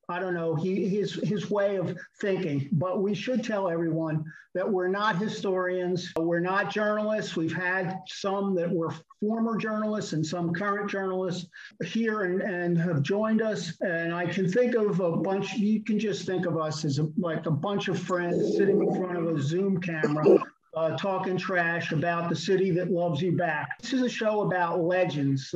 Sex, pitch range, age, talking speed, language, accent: male, 170-200 Hz, 50-69, 190 wpm, English, American